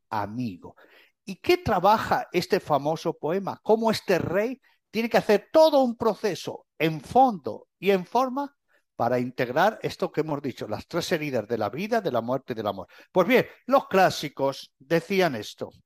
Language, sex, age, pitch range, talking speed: Spanish, male, 50-69, 160-250 Hz, 170 wpm